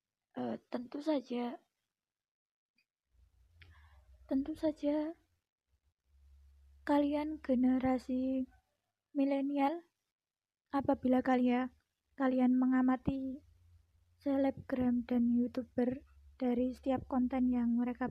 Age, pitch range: 20-39, 230-270 Hz